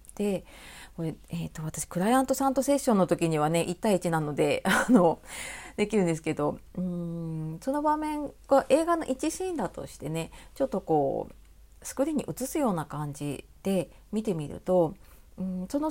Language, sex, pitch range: Japanese, female, 165-250 Hz